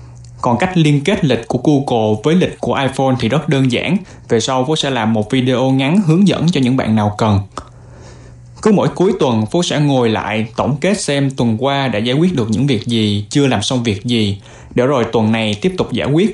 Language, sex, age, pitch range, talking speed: Vietnamese, male, 20-39, 115-150 Hz, 230 wpm